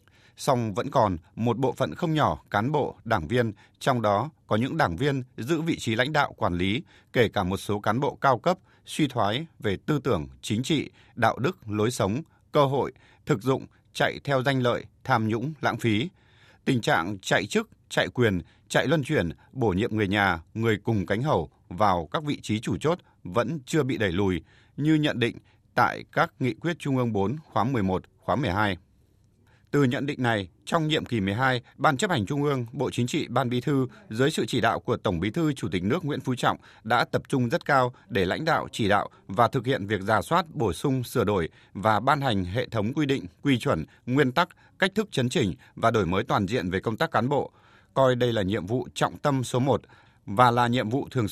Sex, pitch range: male, 105-140 Hz